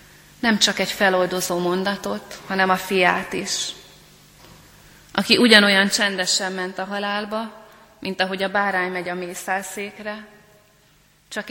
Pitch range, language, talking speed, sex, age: 185-210 Hz, Hungarian, 120 wpm, female, 30-49